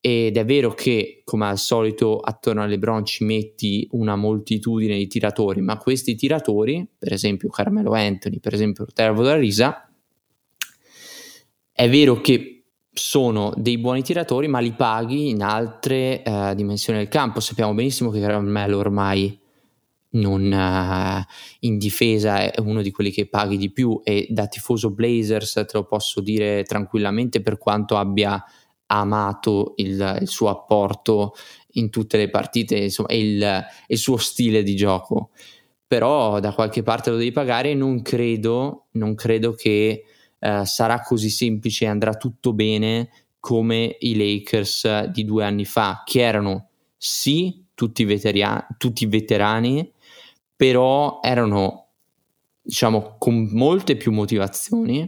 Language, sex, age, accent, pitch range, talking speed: Italian, male, 20-39, native, 105-120 Hz, 140 wpm